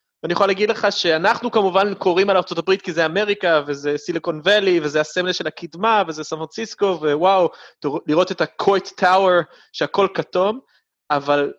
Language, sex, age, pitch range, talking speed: Hebrew, male, 30-49, 155-190 Hz, 150 wpm